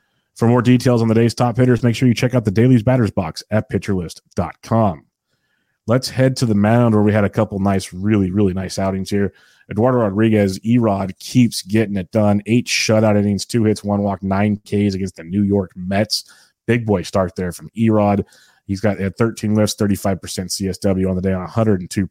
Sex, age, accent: male, 30-49, American